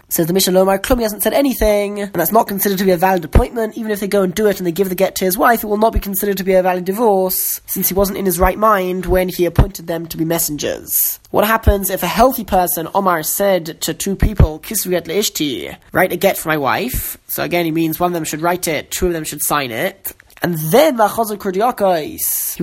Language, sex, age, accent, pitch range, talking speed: English, male, 10-29, British, 175-210 Hz, 245 wpm